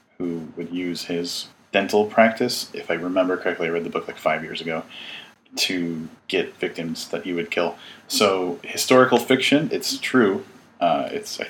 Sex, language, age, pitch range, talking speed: male, English, 30-49, 90-115 Hz, 160 wpm